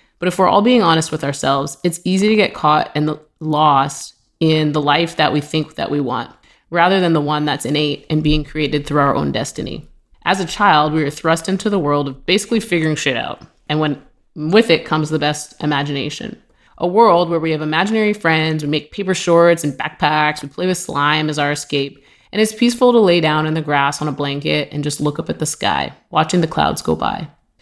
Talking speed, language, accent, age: 225 wpm, English, American, 20-39